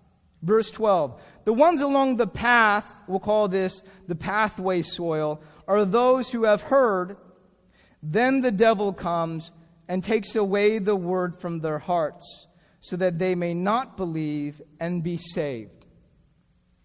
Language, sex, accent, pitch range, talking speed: English, male, American, 165-205 Hz, 140 wpm